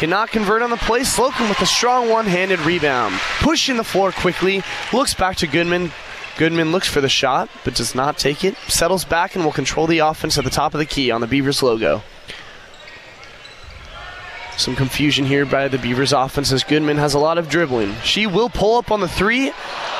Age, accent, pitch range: 20-39, American, 165-230 Hz